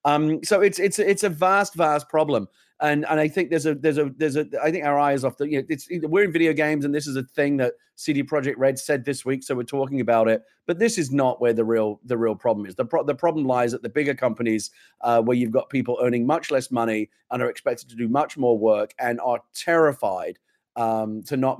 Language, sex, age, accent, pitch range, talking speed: English, male, 30-49, British, 115-150 Hz, 250 wpm